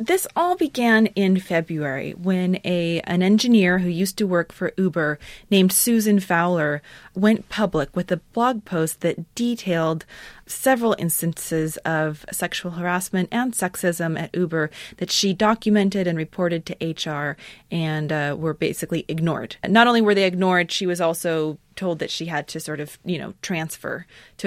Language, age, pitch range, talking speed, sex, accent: English, 30-49, 165-205 Hz, 160 wpm, female, American